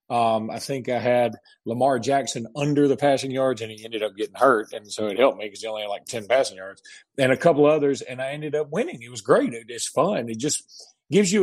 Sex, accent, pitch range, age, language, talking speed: male, American, 120-150 Hz, 40-59, English, 255 wpm